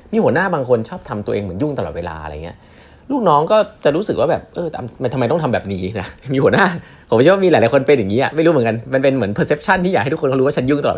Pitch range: 90-130 Hz